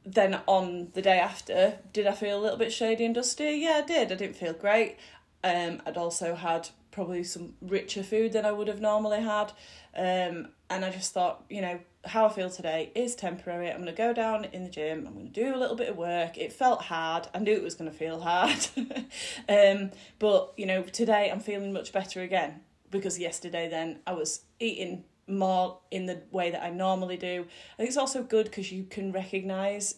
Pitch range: 170-205 Hz